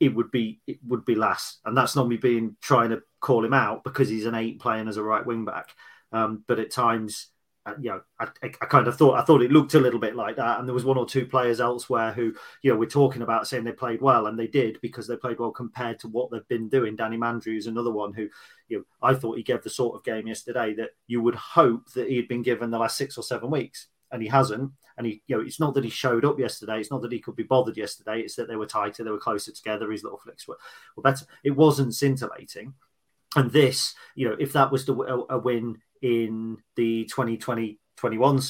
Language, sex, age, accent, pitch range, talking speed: English, male, 30-49, British, 110-125 Hz, 255 wpm